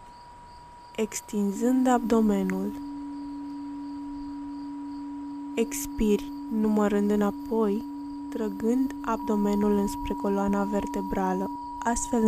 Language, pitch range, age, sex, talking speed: Romanian, 195-295 Hz, 20-39, female, 55 wpm